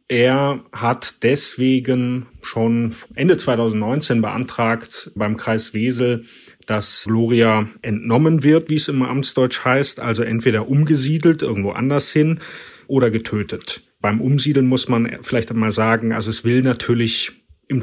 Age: 30-49